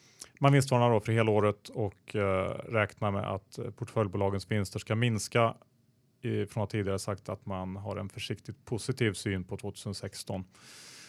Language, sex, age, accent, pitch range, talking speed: Swedish, male, 30-49, Norwegian, 100-125 Hz, 155 wpm